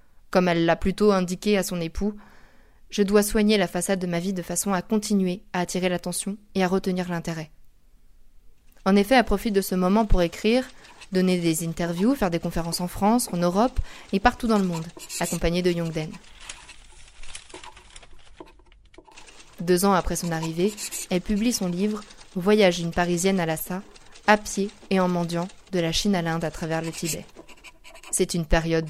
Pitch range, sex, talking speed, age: 170-205 Hz, female, 175 wpm, 20-39